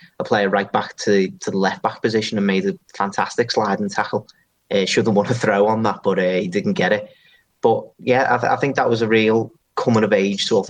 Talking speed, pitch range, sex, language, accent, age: 225 wpm, 100-115 Hz, male, English, British, 30-49